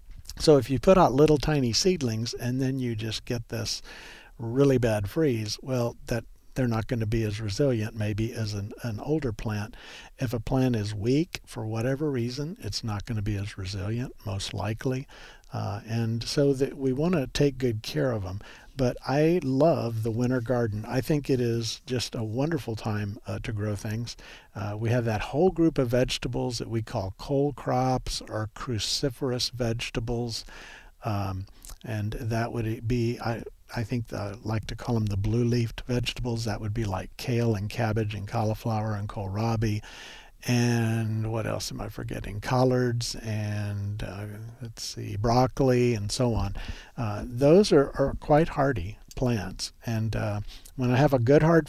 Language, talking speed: English, 180 wpm